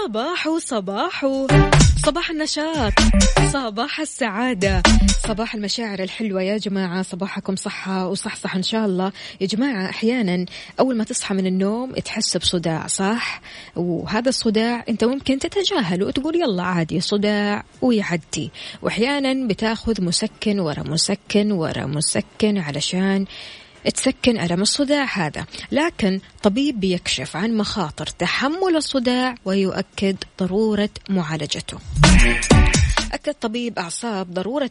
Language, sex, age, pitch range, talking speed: Arabic, female, 20-39, 185-230 Hz, 110 wpm